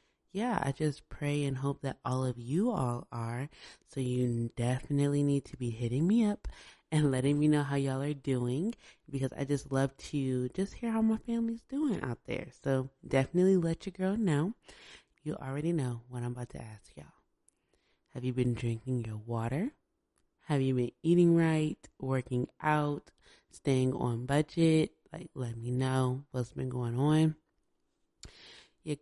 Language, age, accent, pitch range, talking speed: English, 20-39, American, 125-155 Hz, 170 wpm